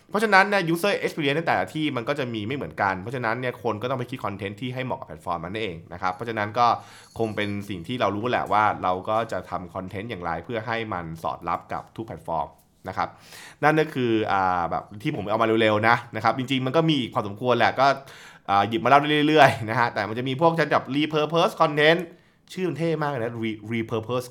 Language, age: Thai, 20-39